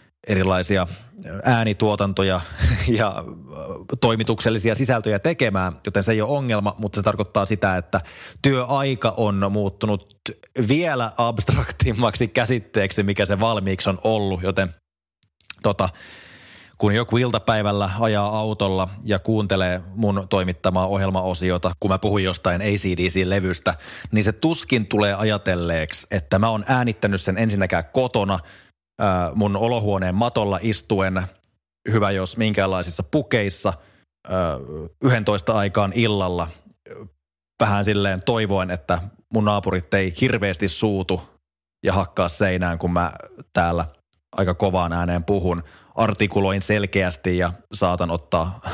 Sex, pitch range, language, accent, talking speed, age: male, 90-110 Hz, Finnish, native, 110 wpm, 20-39